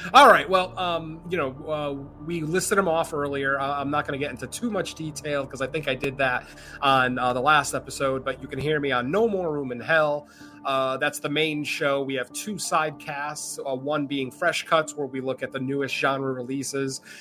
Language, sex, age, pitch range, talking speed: English, male, 30-49, 135-160 Hz, 235 wpm